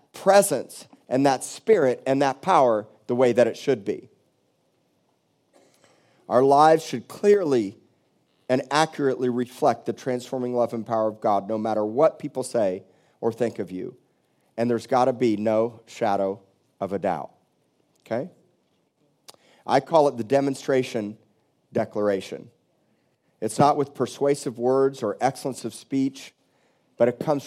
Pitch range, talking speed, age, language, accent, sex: 115-155 Hz, 140 wpm, 40-59, English, American, male